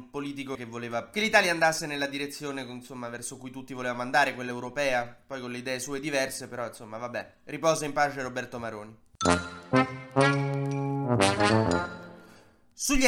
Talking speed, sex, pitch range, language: 140 wpm, male, 140-185 Hz, Italian